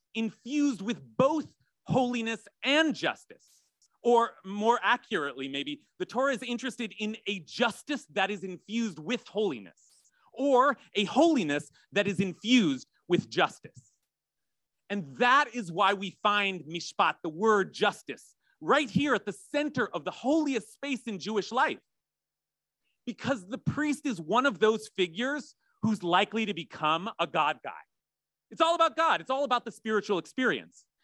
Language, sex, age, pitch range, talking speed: English, male, 30-49, 205-275 Hz, 150 wpm